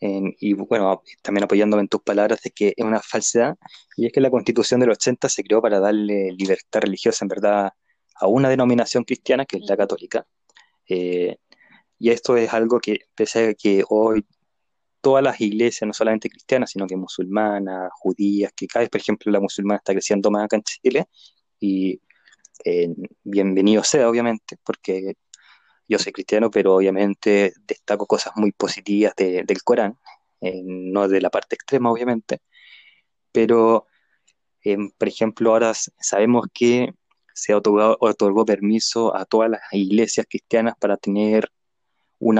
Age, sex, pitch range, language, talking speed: 20-39, male, 100-115 Hz, Spanish, 160 wpm